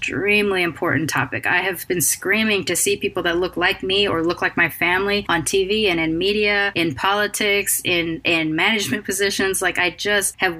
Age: 20-39